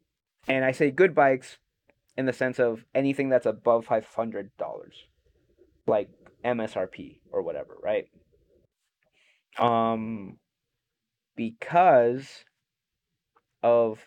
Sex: male